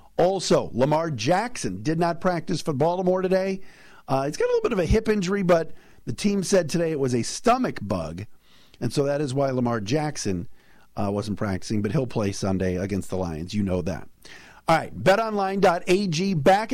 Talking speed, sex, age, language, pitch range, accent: 195 wpm, male, 50-69, English, 125-185 Hz, American